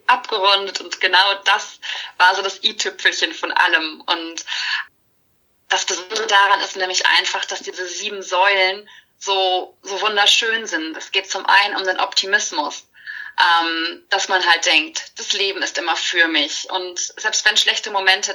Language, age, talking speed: German, 20-39, 155 wpm